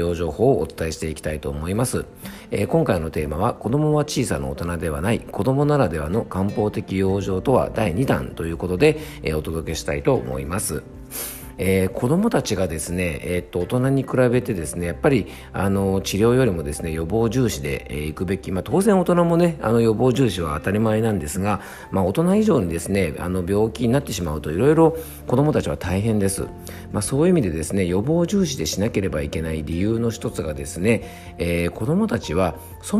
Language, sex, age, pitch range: Japanese, male, 50-69, 85-125 Hz